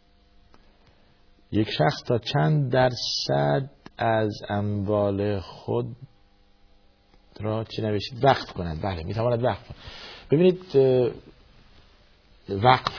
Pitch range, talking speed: 105-130 Hz, 90 wpm